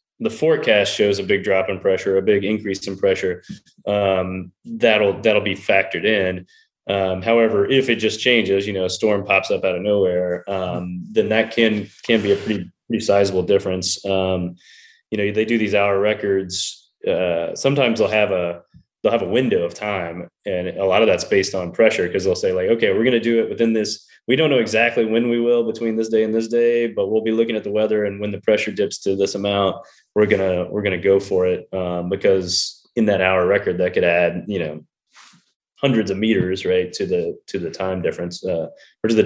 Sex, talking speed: male, 225 wpm